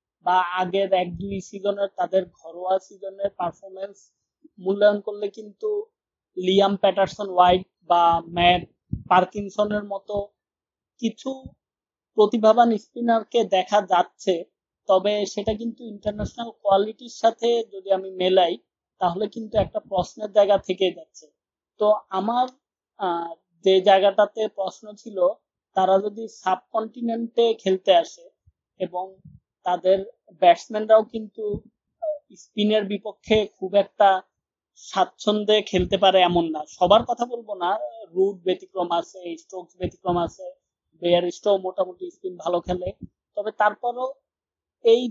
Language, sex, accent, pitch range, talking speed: English, male, Indian, 185-225 Hz, 105 wpm